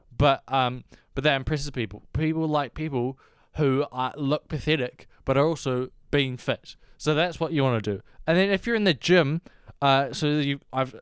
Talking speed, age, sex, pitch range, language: 195 wpm, 20-39, male, 125-165 Hz, English